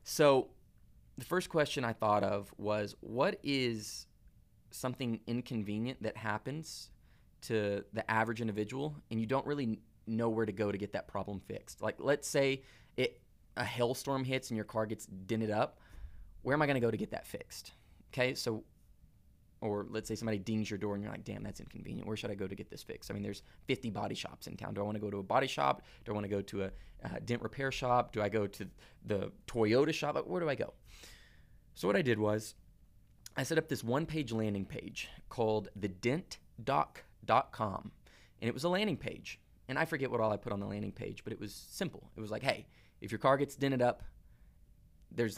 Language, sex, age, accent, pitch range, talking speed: English, male, 20-39, American, 100-125 Hz, 215 wpm